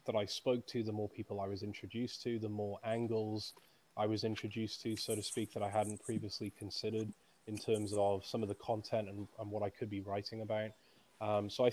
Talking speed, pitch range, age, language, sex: 225 wpm, 105-115 Hz, 20-39, English, male